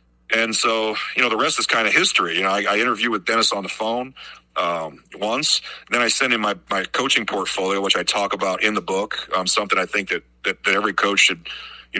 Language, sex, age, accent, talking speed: English, male, 40-59, American, 240 wpm